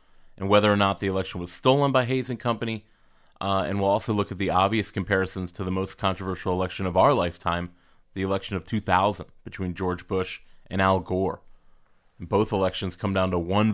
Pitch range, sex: 90-105 Hz, male